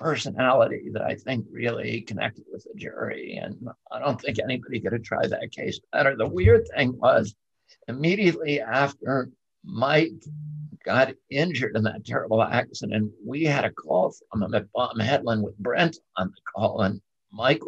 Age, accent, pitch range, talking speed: 60-79, American, 105-145 Hz, 165 wpm